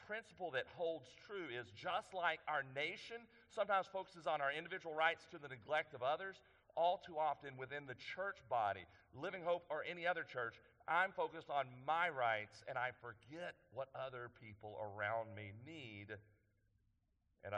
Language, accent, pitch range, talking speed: English, American, 105-155 Hz, 165 wpm